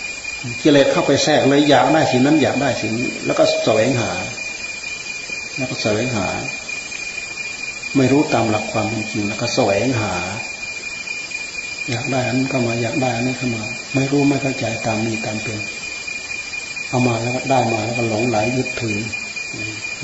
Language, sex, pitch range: Thai, male, 110-125 Hz